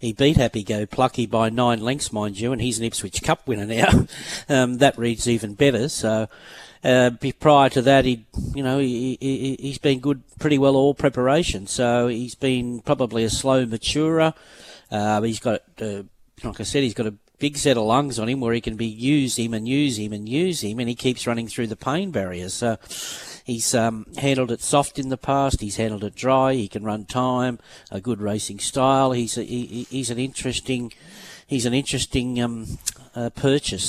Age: 40-59